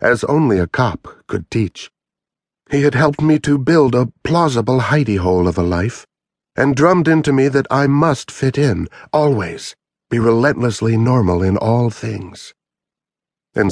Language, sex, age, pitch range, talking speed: English, male, 60-79, 95-135 Hz, 155 wpm